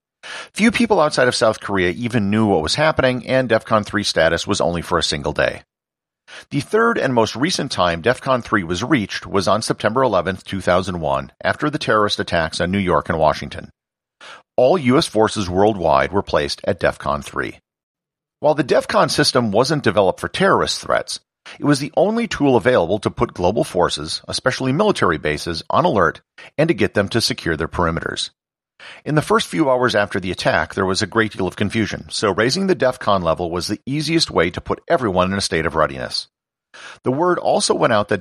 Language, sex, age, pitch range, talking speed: English, male, 50-69, 90-130 Hz, 195 wpm